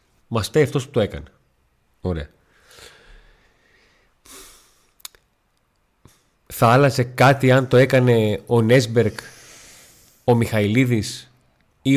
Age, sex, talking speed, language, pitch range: 30-49, male, 90 wpm, Greek, 110-135 Hz